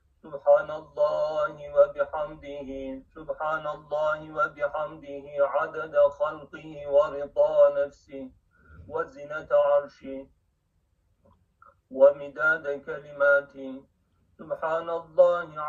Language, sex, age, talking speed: Turkish, male, 50-69, 60 wpm